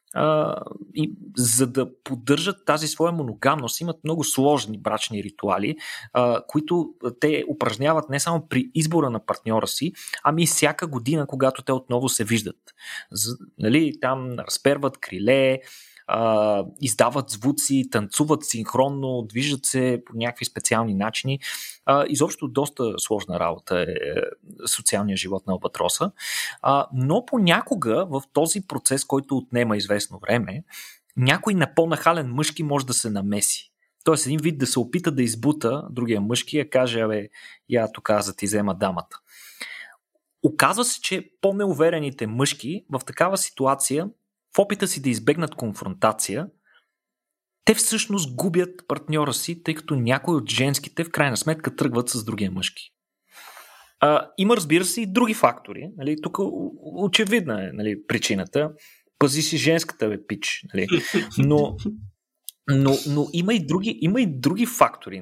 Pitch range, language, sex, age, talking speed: 120-165 Hz, Bulgarian, male, 30-49, 140 wpm